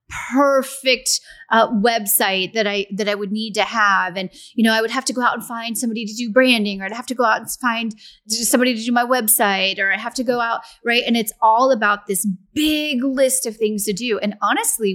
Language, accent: English, American